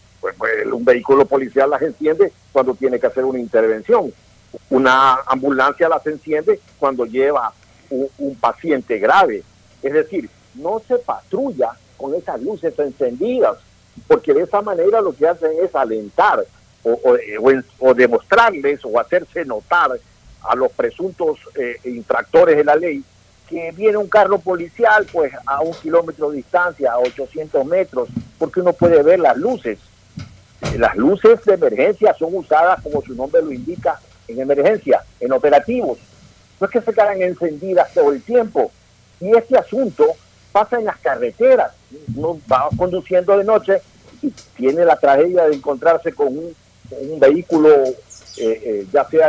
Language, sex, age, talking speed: Spanish, male, 50-69, 155 wpm